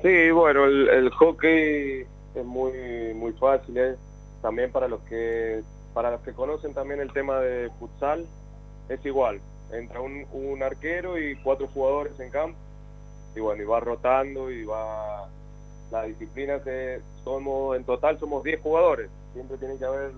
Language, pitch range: Spanish, 120-140 Hz